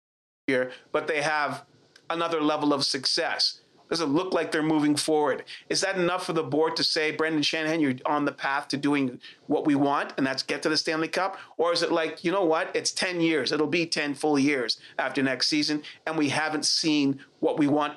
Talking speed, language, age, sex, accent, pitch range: 215 wpm, English, 30-49, male, American, 145-170 Hz